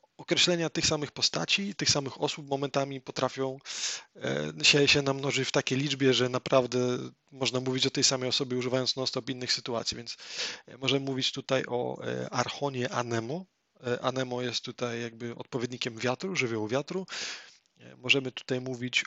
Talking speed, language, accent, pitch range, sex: 140 wpm, Polish, native, 120-140 Hz, male